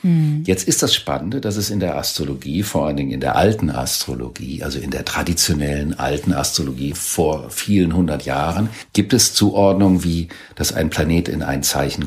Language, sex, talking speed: German, male, 180 wpm